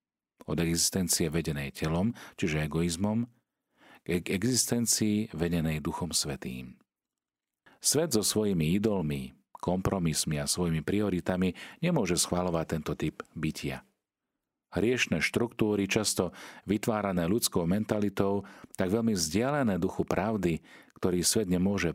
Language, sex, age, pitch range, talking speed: Slovak, male, 40-59, 85-110 Hz, 105 wpm